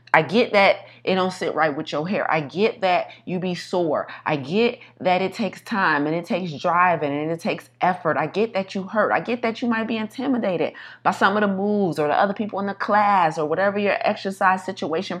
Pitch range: 170-220 Hz